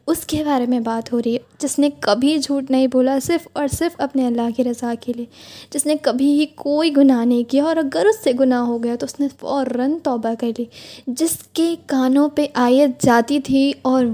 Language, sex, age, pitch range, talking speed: Urdu, female, 10-29, 245-285 Hz, 225 wpm